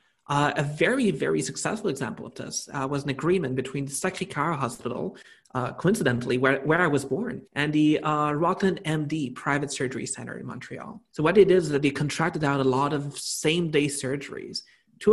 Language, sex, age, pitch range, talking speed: English, male, 30-49, 140-180 Hz, 195 wpm